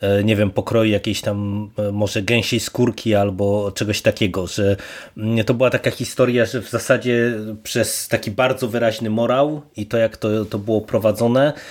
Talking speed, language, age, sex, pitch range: 160 wpm, Polish, 20-39, male, 105-125 Hz